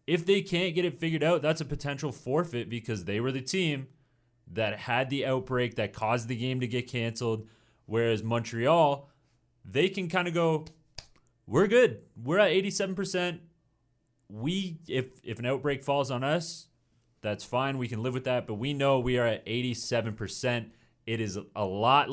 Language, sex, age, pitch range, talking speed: English, male, 30-49, 110-140 Hz, 175 wpm